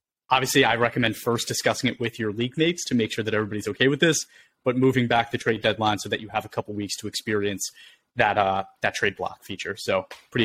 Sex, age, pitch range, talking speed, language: male, 30-49, 110-130 Hz, 235 wpm, English